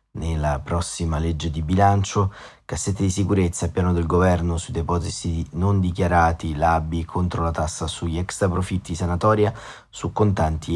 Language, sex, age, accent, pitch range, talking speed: Italian, male, 30-49, native, 85-95 Hz, 140 wpm